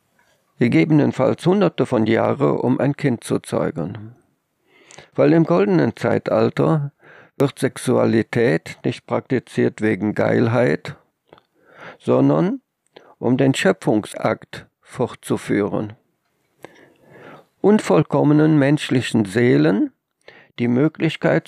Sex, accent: male, German